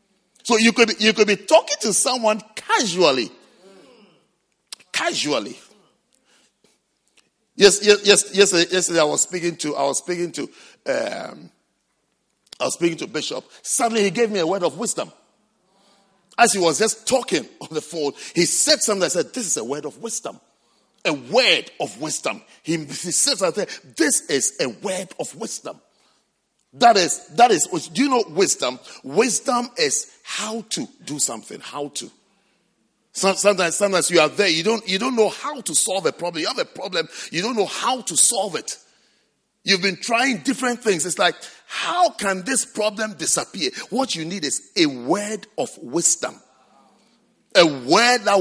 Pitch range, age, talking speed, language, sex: 180-245 Hz, 50-69, 170 wpm, English, male